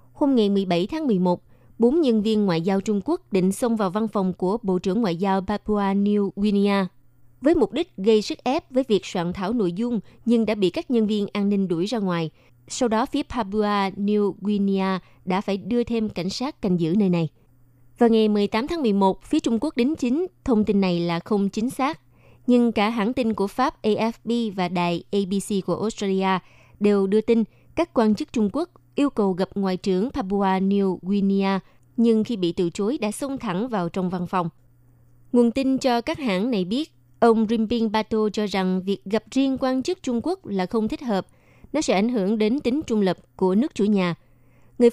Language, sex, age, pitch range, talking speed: Vietnamese, female, 20-39, 185-235 Hz, 210 wpm